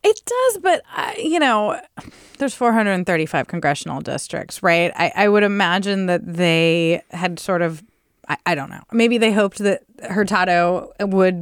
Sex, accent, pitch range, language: female, American, 180-230 Hz, English